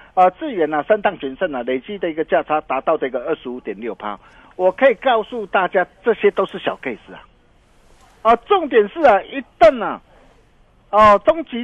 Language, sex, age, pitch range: Chinese, male, 50-69, 190-265 Hz